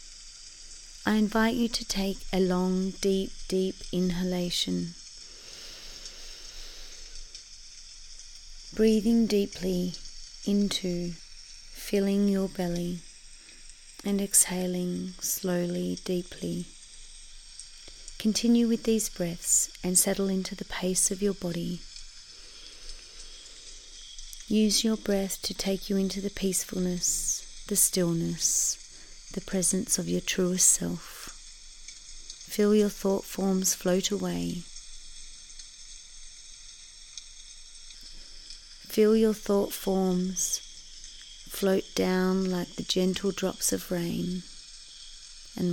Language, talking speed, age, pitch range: English, 90 wpm, 30-49, 180-205 Hz